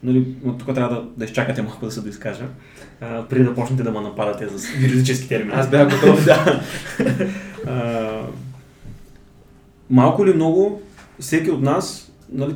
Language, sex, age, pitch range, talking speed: Bulgarian, male, 20-39, 115-135 Hz, 155 wpm